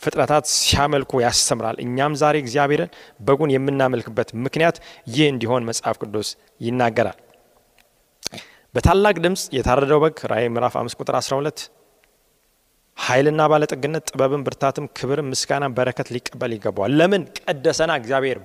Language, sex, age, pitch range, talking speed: Amharic, male, 30-49, 130-200 Hz, 105 wpm